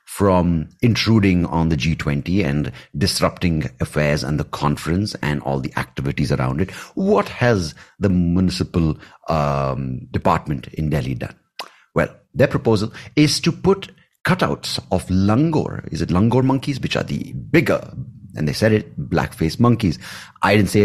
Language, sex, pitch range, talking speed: English, male, 75-115 Hz, 150 wpm